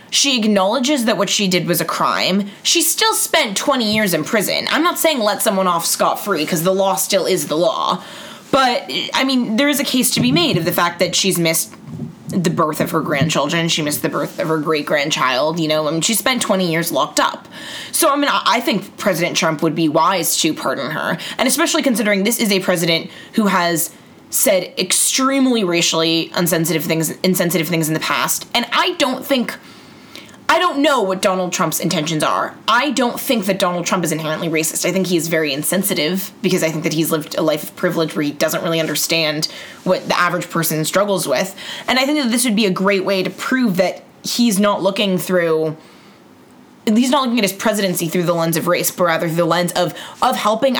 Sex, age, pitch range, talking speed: female, 20-39, 165-230 Hz, 215 wpm